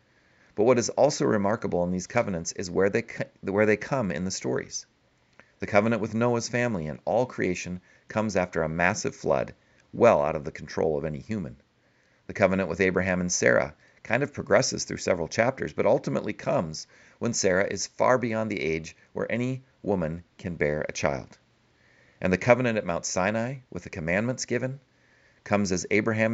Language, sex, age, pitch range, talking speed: English, male, 40-59, 90-115 Hz, 180 wpm